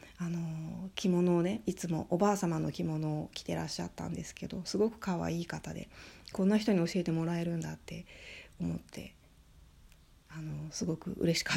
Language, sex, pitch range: Japanese, female, 150-190 Hz